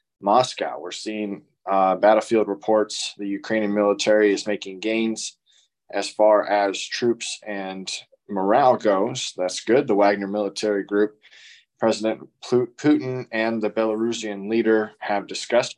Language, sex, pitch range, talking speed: English, male, 100-110 Hz, 125 wpm